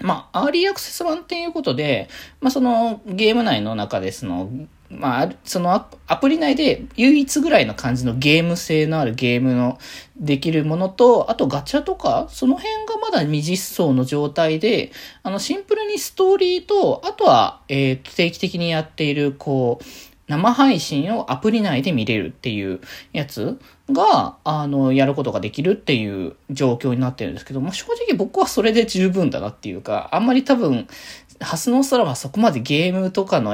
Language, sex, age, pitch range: Japanese, male, 20-39, 130-220 Hz